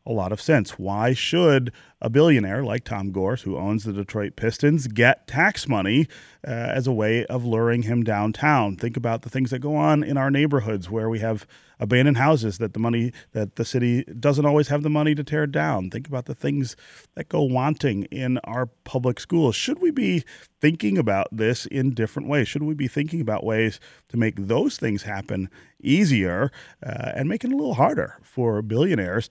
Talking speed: 200 wpm